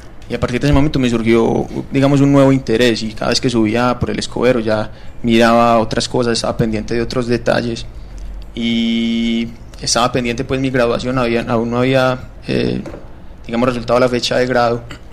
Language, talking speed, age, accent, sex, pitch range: Spanish, 185 wpm, 20-39, Colombian, male, 115-125 Hz